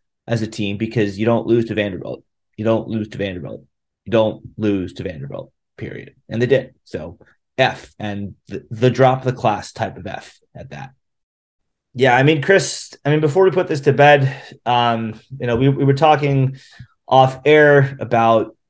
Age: 20-39